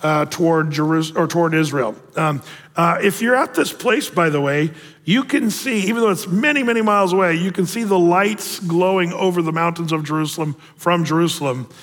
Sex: male